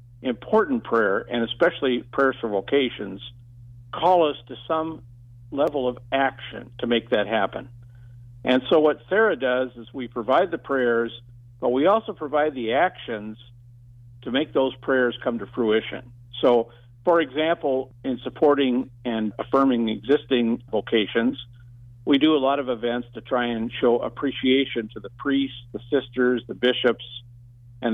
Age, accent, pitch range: 50-69, American, 120-140 Hz